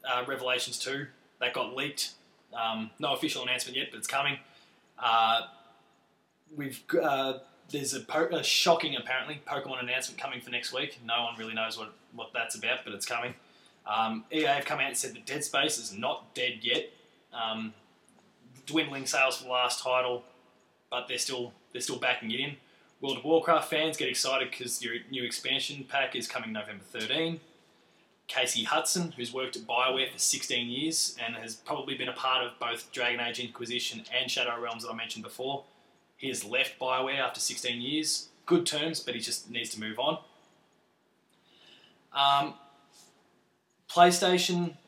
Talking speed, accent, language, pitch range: 170 wpm, Australian, English, 120-145 Hz